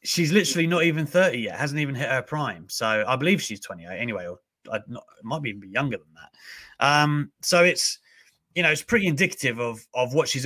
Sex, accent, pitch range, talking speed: male, British, 120-170 Hz, 210 wpm